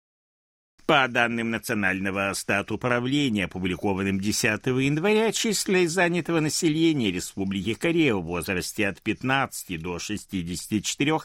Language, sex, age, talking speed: Russian, male, 60-79, 95 wpm